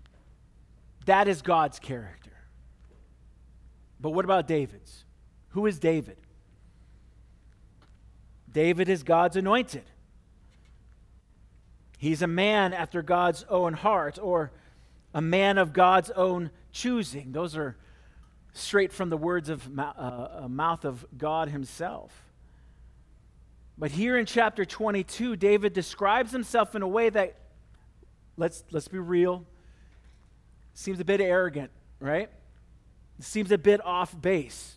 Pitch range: 125-195 Hz